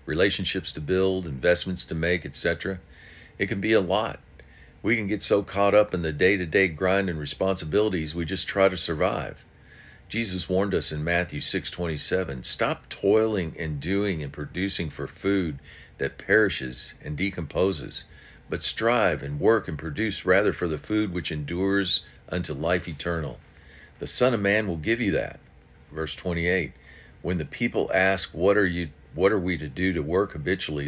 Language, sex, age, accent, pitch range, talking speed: English, male, 50-69, American, 75-95 Hz, 175 wpm